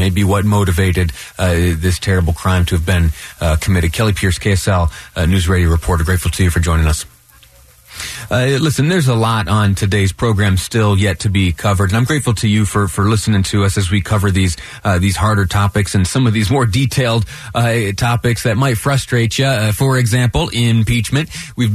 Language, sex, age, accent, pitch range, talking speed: English, male, 30-49, American, 95-115 Hz, 200 wpm